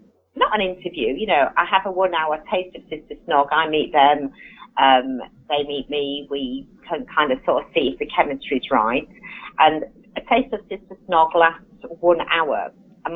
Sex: female